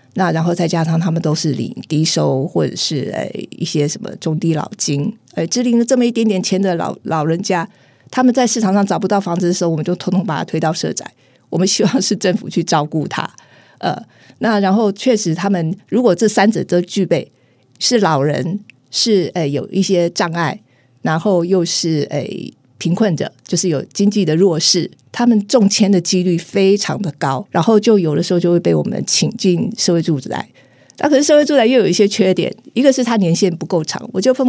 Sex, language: female, Chinese